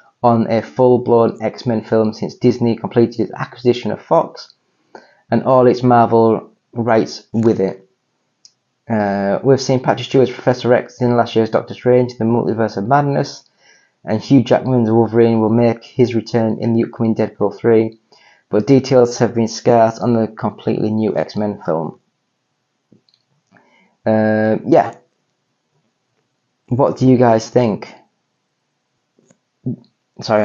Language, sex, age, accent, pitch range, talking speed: English, male, 20-39, British, 110-130 Hz, 130 wpm